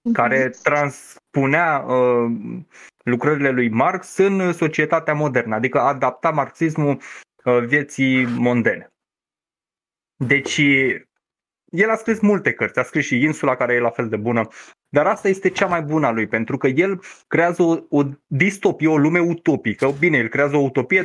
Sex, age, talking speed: male, 20-39, 155 wpm